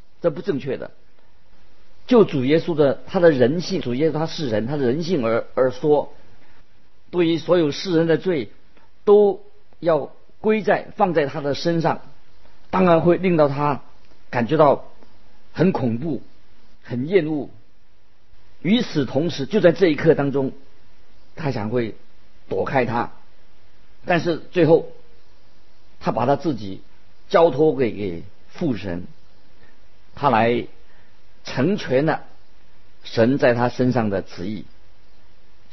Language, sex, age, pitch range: Chinese, male, 50-69, 110-160 Hz